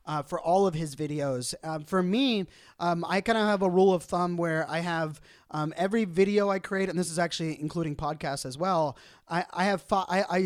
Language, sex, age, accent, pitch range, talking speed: English, male, 30-49, American, 150-185 Hz, 220 wpm